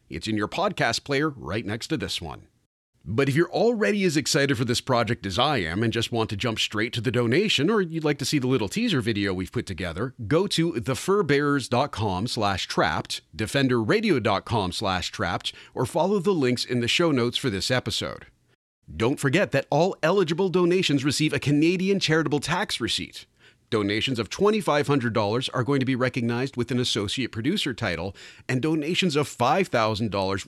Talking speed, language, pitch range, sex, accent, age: 175 wpm, English, 110-155 Hz, male, American, 40-59